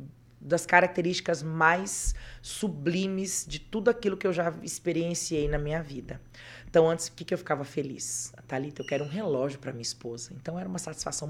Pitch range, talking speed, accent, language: 130-170 Hz, 180 wpm, Brazilian, Portuguese